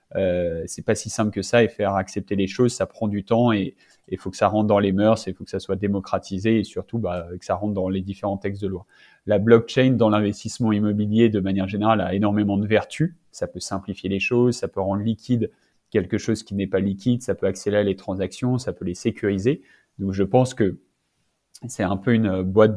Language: French